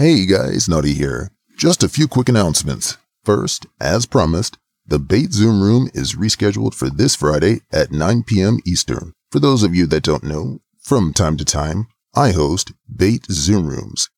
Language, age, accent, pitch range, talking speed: English, 40-59, American, 80-115 Hz, 175 wpm